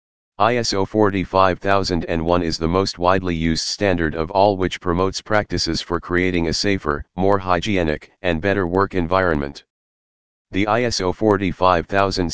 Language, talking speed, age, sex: English, 125 wpm, 40-59, male